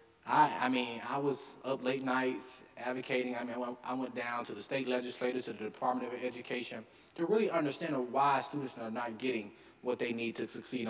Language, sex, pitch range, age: English, male, 110-135 Hz, 20-39